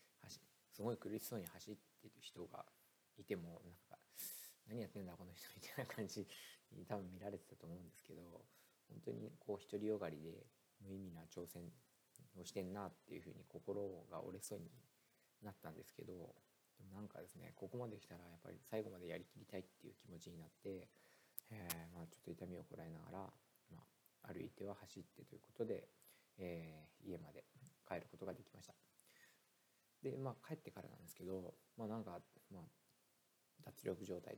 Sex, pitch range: male, 85-105 Hz